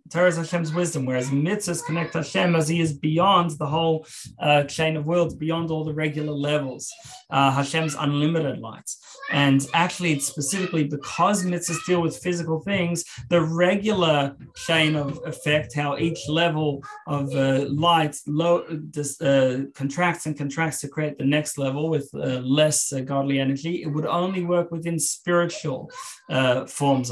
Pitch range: 140-165 Hz